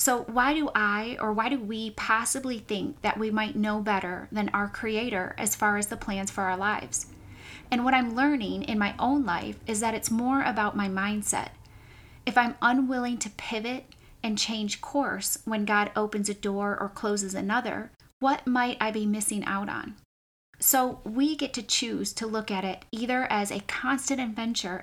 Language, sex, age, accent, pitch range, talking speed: English, female, 20-39, American, 205-245 Hz, 190 wpm